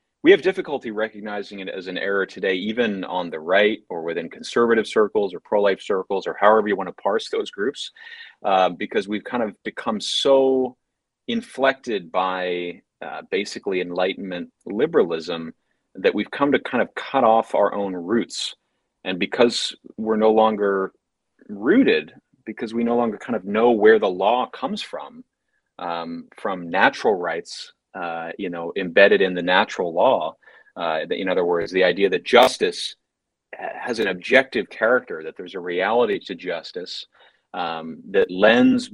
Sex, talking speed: male, 160 wpm